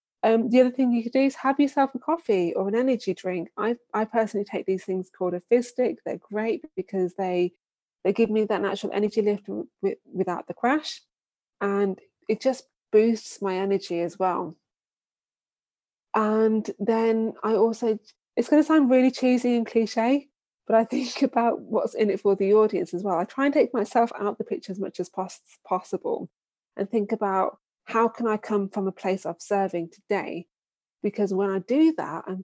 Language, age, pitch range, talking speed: English, 20-39, 190-240 Hz, 195 wpm